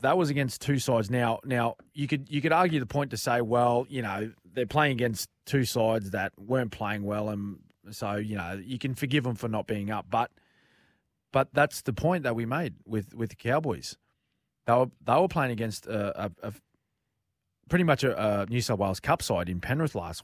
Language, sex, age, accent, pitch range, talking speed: English, male, 20-39, Australian, 105-130 Hz, 215 wpm